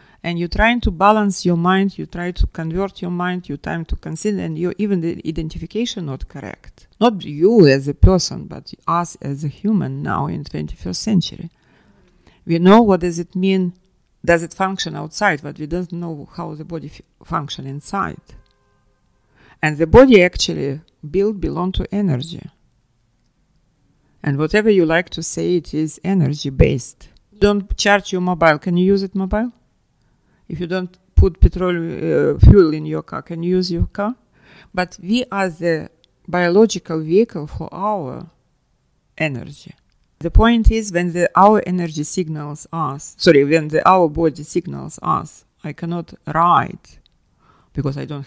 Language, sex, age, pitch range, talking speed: English, female, 50-69, 155-195 Hz, 165 wpm